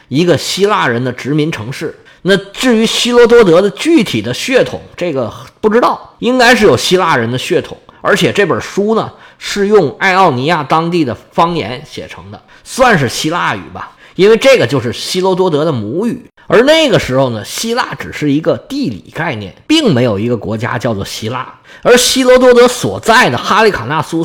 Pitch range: 135-220 Hz